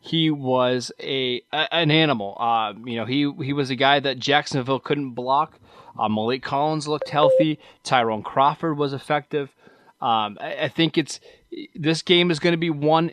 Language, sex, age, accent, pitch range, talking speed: English, male, 20-39, American, 125-155 Hz, 175 wpm